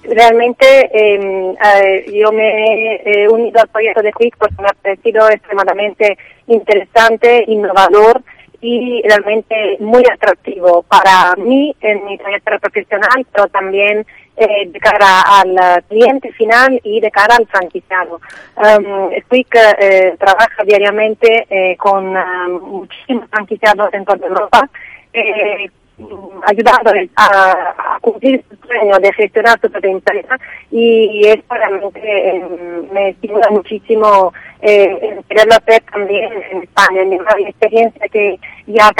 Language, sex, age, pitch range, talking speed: Spanish, female, 30-49, 195-220 Hz, 130 wpm